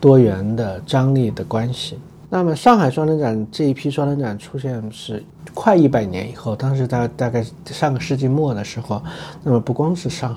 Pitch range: 115-140 Hz